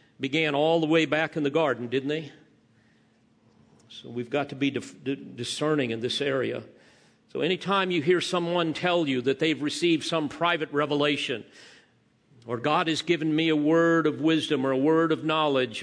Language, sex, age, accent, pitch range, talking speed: English, male, 50-69, American, 145-180 Hz, 175 wpm